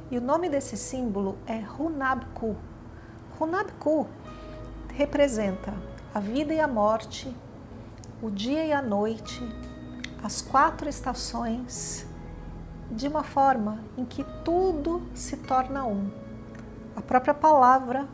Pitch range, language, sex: 215-275 Hz, Portuguese, female